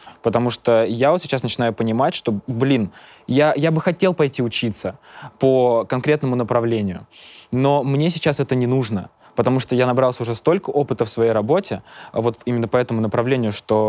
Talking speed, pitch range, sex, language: 175 wpm, 110-135 Hz, male, Russian